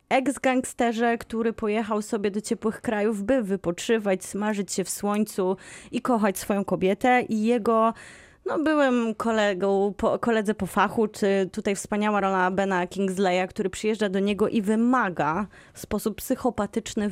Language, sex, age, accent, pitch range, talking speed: Polish, female, 20-39, native, 185-230 Hz, 145 wpm